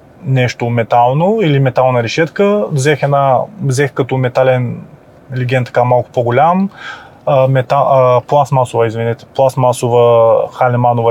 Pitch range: 130-160 Hz